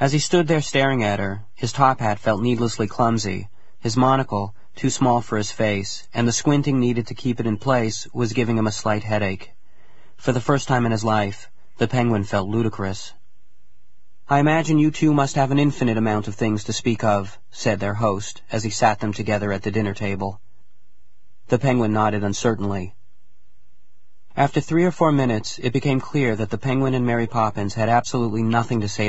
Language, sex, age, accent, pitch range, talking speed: English, male, 40-59, American, 105-125 Hz, 195 wpm